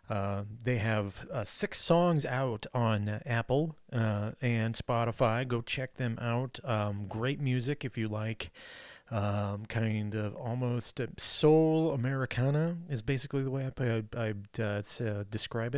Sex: male